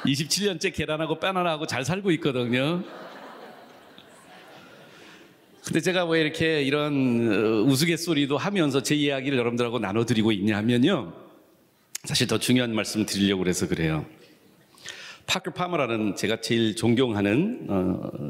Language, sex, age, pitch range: Korean, male, 40-59, 115-160 Hz